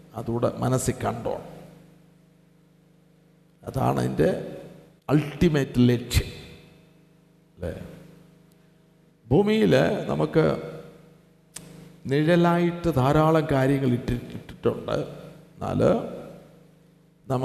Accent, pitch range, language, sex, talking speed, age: native, 140-160 Hz, Malayalam, male, 60 wpm, 50-69